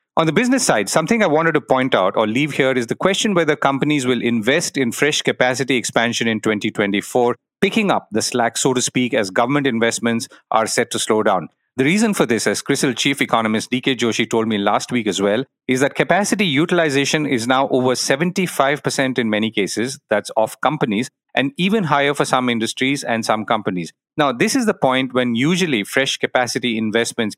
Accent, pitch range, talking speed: Indian, 115-155 Hz, 195 wpm